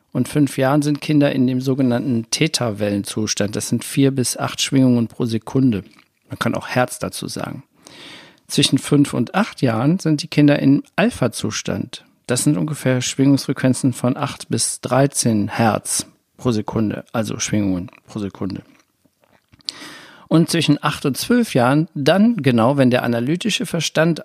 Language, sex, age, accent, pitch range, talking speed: German, male, 50-69, German, 120-150 Hz, 150 wpm